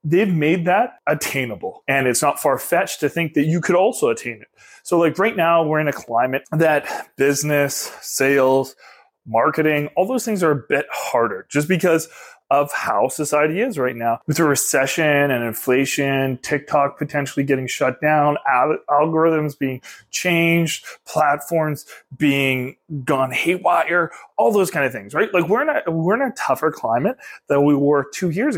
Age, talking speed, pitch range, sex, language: 20-39, 170 wpm, 140-180 Hz, male, English